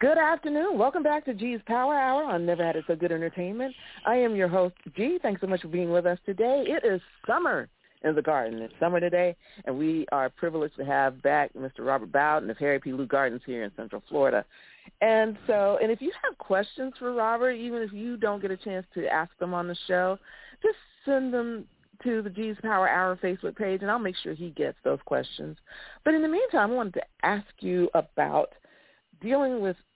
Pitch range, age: 160-230 Hz, 40-59